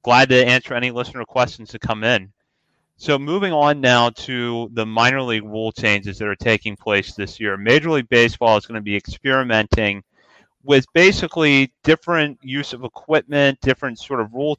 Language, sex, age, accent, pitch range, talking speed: English, male, 30-49, American, 105-130 Hz, 175 wpm